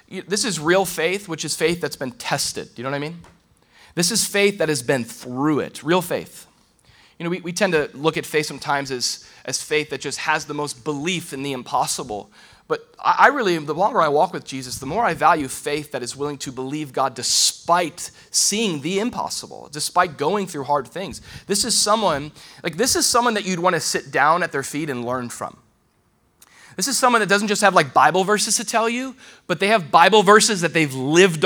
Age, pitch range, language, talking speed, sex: 30-49, 140-195 Hz, English, 225 wpm, male